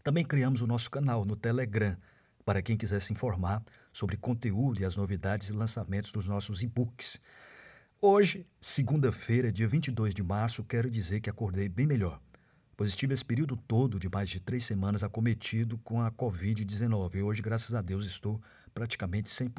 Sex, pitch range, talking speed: male, 100-125 Hz, 170 wpm